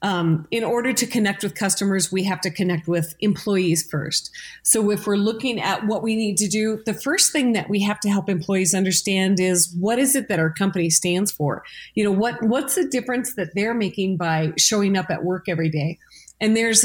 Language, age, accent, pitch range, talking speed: English, 30-49, American, 175-215 Hz, 215 wpm